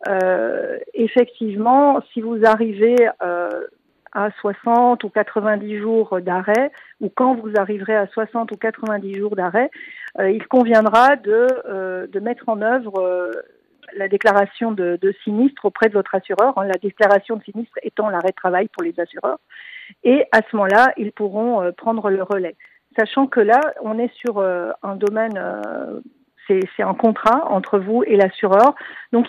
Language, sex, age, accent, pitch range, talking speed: French, female, 50-69, French, 200-245 Hz, 165 wpm